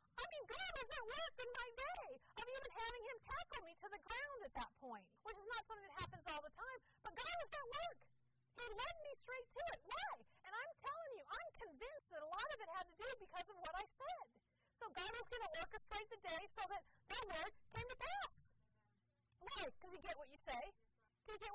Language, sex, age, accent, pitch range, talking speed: English, female, 40-59, American, 245-405 Hz, 235 wpm